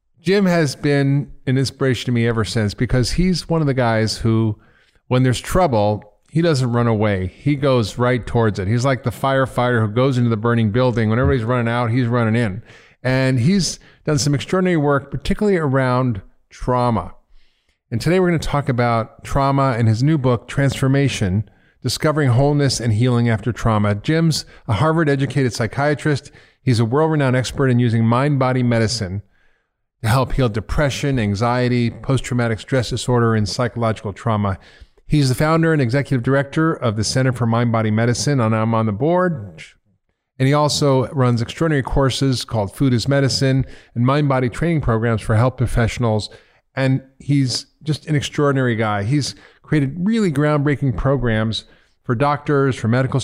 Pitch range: 115-140 Hz